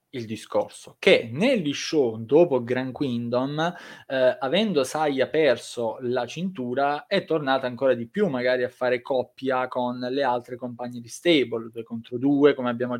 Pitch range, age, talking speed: 120-140 Hz, 20-39, 155 wpm